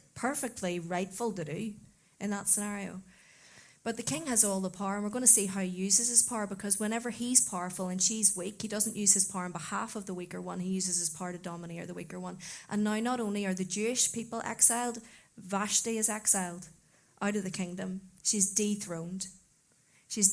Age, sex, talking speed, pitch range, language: 30-49, female, 210 wpm, 180-215 Hz, English